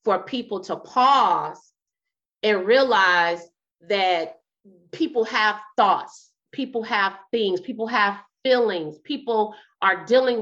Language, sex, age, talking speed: English, female, 30-49, 110 wpm